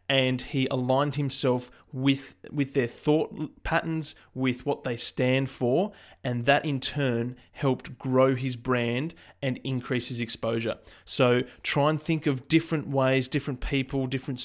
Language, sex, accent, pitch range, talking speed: English, male, Australian, 125-145 Hz, 150 wpm